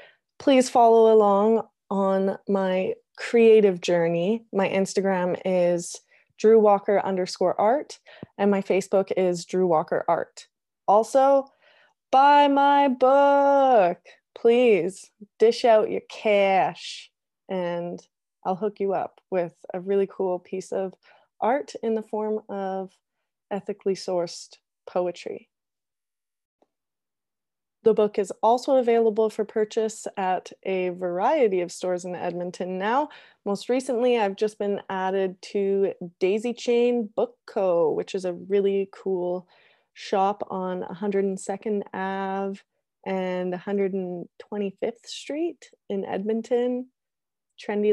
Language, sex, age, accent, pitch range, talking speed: English, female, 20-39, American, 185-235 Hz, 110 wpm